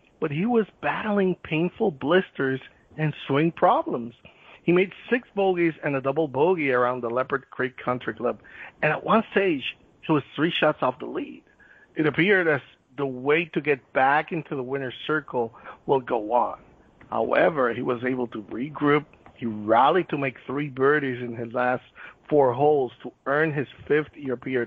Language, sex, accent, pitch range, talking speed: English, male, American, 130-165 Hz, 170 wpm